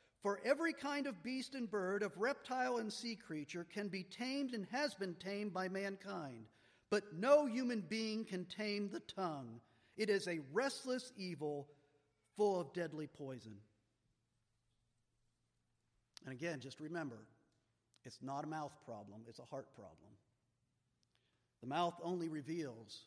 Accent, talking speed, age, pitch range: American, 145 wpm, 50-69, 120-190 Hz